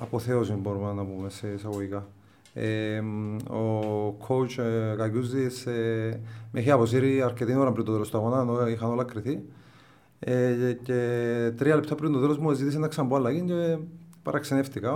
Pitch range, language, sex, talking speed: 115-130 Hz, Greek, male, 170 wpm